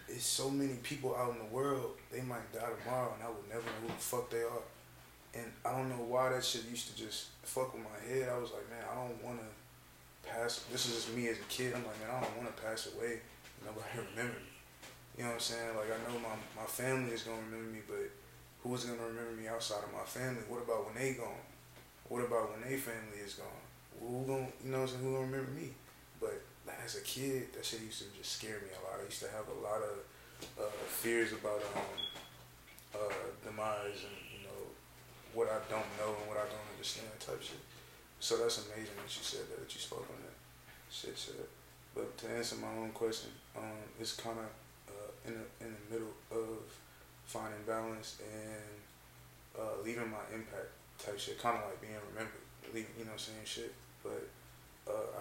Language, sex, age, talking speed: English, male, 20-39, 225 wpm